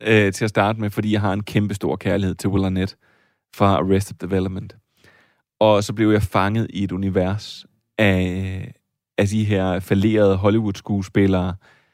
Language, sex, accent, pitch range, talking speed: Danish, male, native, 95-110 Hz, 155 wpm